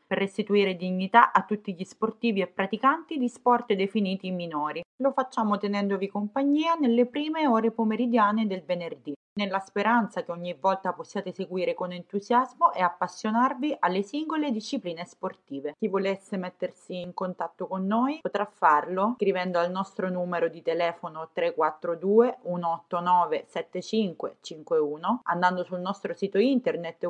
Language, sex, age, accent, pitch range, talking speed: Italian, female, 30-49, native, 175-235 Hz, 130 wpm